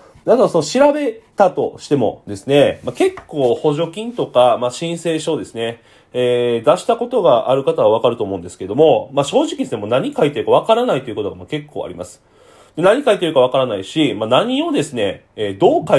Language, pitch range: Japanese, 125-185 Hz